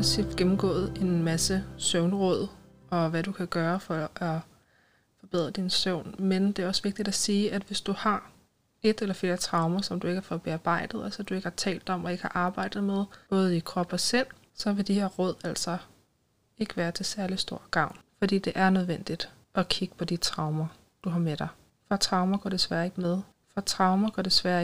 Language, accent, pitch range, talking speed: Danish, native, 170-195 Hz, 210 wpm